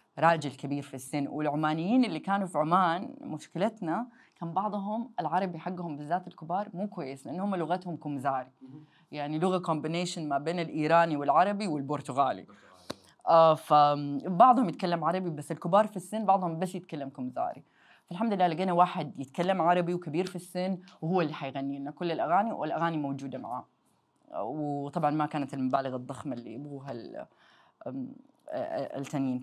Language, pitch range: Arabic, 150-190 Hz